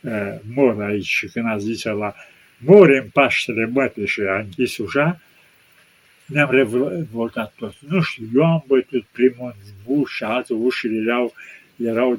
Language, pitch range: Romanian, 110-130 Hz